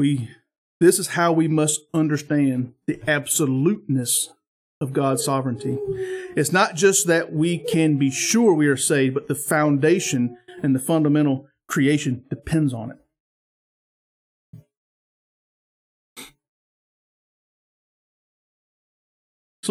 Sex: male